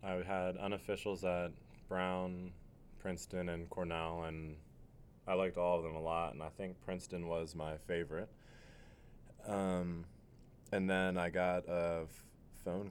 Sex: male